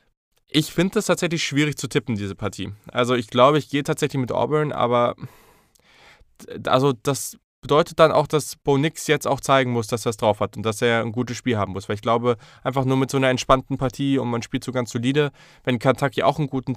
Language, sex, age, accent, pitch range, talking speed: German, male, 20-39, German, 100-130 Hz, 230 wpm